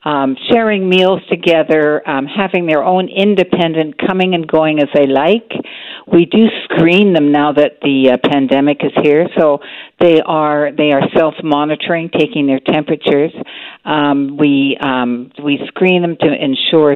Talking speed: 155 wpm